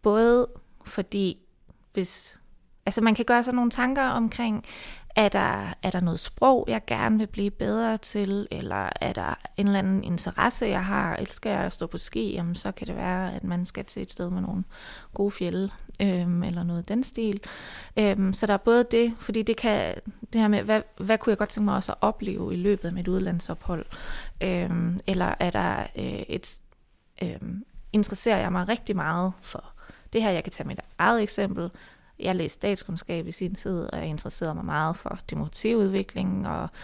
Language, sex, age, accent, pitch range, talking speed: Danish, female, 20-39, native, 175-210 Hz, 195 wpm